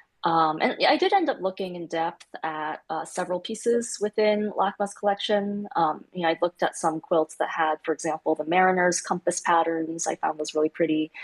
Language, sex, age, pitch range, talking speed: English, female, 20-39, 165-190 Hz, 200 wpm